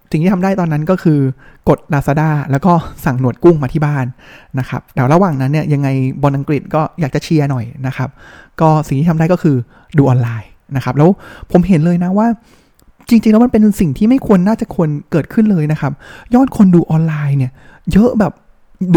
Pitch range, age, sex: 140-190 Hz, 20-39, male